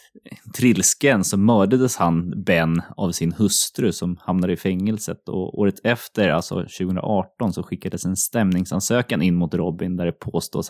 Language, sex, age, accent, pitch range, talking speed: English, male, 20-39, Swedish, 90-110 Hz, 145 wpm